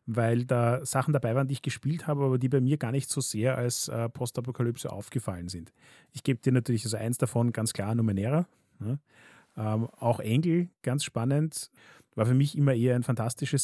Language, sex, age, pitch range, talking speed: German, male, 30-49, 115-140 Hz, 190 wpm